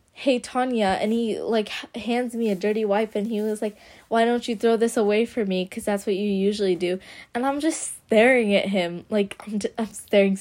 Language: English